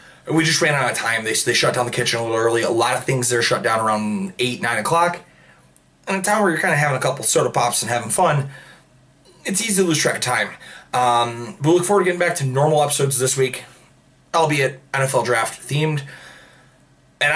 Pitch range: 120-165 Hz